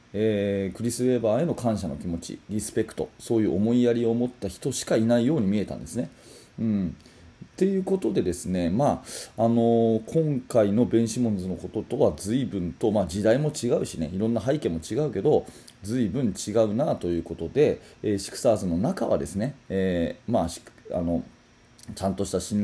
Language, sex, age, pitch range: Japanese, male, 30-49, 95-120 Hz